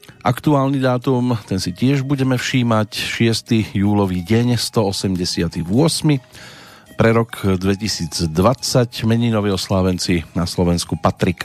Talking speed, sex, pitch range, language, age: 100 wpm, male, 90-115 Hz, Slovak, 40-59